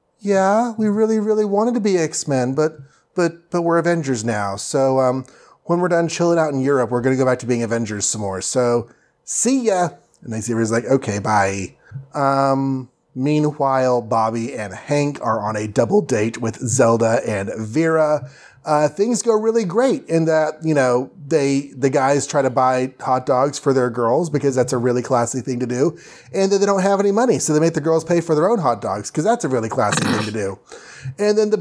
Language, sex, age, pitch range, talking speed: English, male, 30-49, 125-165 Hz, 215 wpm